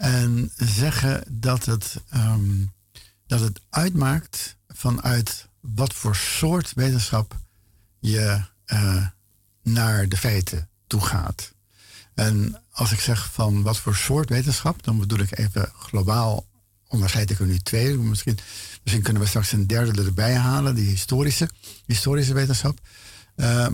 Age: 60-79